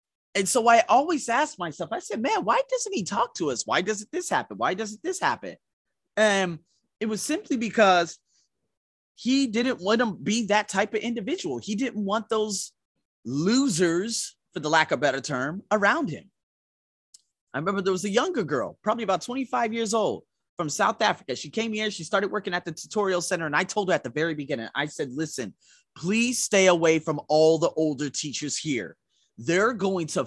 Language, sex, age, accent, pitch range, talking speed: English, male, 30-49, American, 145-215 Hz, 195 wpm